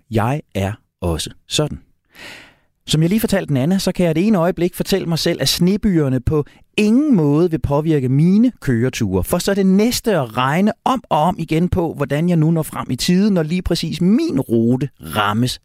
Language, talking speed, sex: Danish, 205 wpm, male